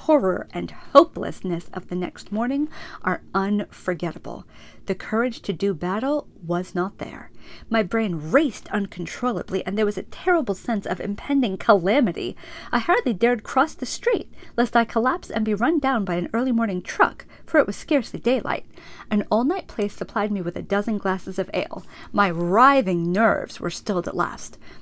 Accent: American